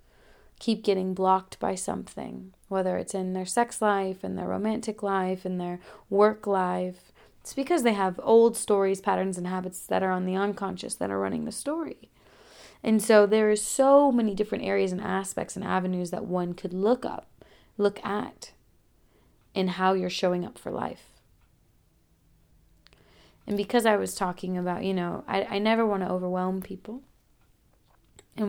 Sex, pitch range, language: female, 185-225 Hz, English